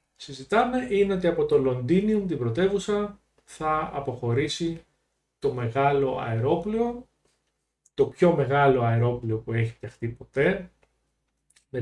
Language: Greek